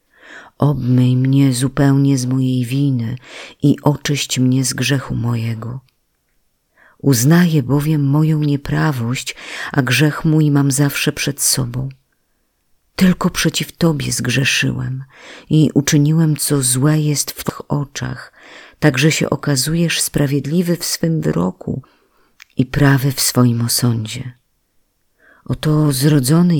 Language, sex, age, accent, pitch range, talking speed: Polish, female, 40-59, native, 125-155 Hz, 110 wpm